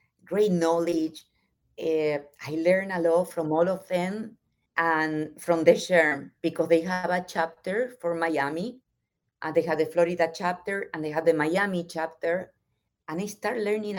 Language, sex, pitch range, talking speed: English, female, 160-185 Hz, 165 wpm